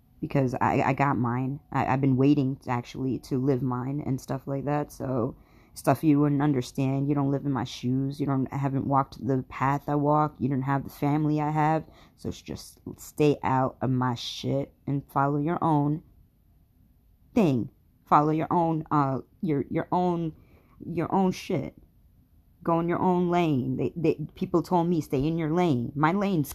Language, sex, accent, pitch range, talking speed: English, female, American, 130-165 Hz, 190 wpm